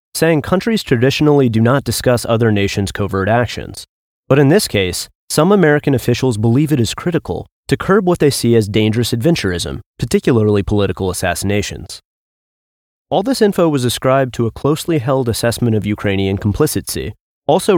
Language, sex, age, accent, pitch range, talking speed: English, male, 30-49, American, 105-150 Hz, 155 wpm